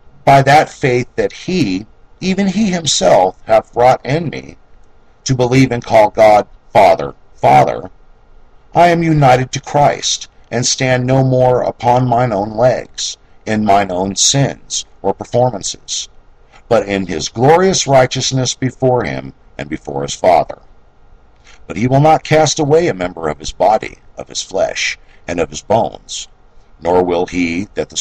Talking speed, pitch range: 155 wpm, 95-130 Hz